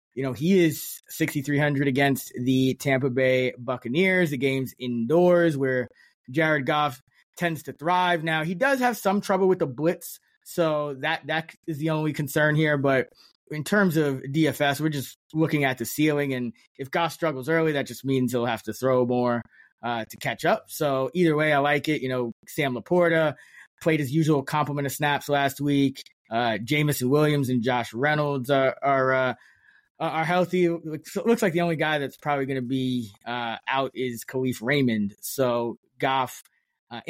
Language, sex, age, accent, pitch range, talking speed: English, male, 20-39, American, 130-165 Hz, 180 wpm